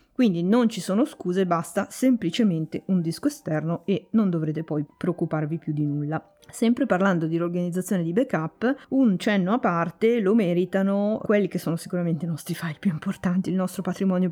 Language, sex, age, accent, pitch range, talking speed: Italian, female, 20-39, native, 165-205 Hz, 175 wpm